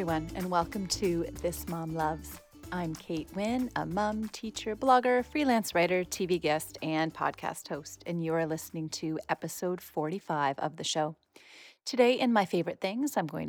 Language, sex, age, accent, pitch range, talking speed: English, female, 30-49, American, 155-195 Hz, 165 wpm